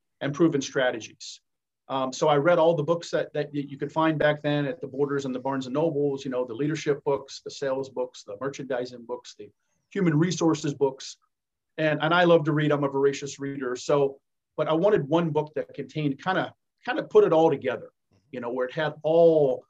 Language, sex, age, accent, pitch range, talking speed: English, male, 40-59, American, 135-165 Hz, 220 wpm